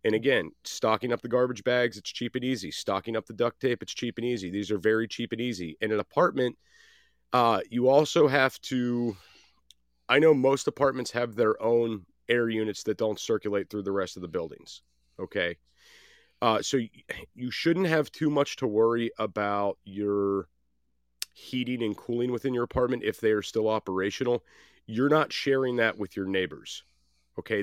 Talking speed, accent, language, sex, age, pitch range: 180 wpm, American, English, male, 30-49, 100-120 Hz